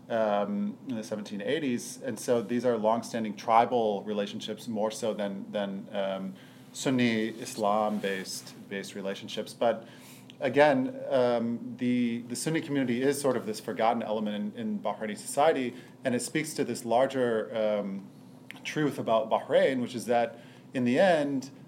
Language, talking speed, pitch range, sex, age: English, 150 wpm, 105-125 Hz, male, 40-59